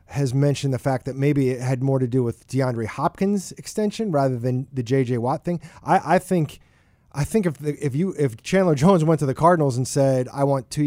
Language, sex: English, male